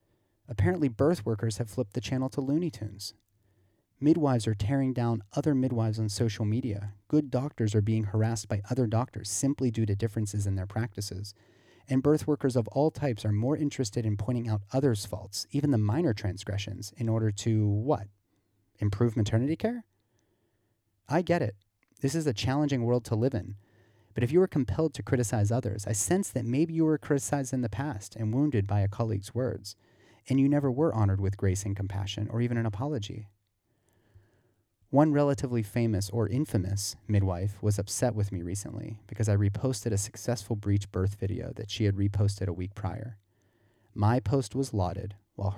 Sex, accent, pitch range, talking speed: male, American, 100-130 Hz, 180 wpm